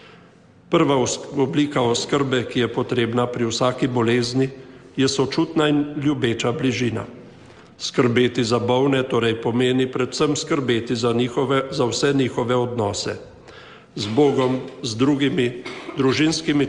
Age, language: 50-69, English